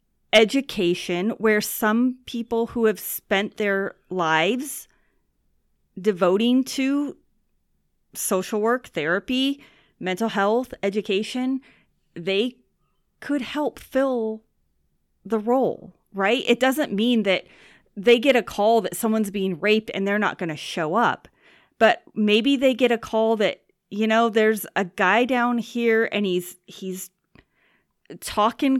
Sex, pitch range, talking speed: female, 190-240 Hz, 125 wpm